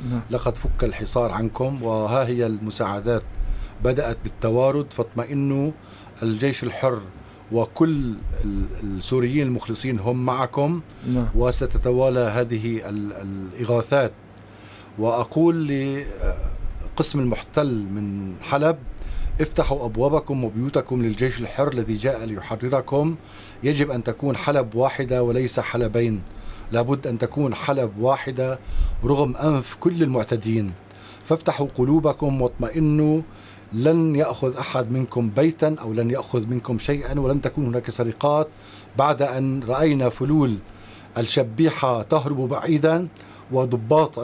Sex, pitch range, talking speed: male, 110-140 Hz, 100 wpm